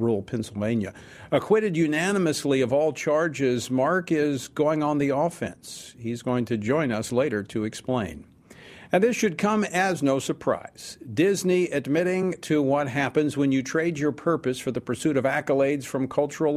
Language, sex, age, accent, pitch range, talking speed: English, male, 50-69, American, 125-165 Hz, 165 wpm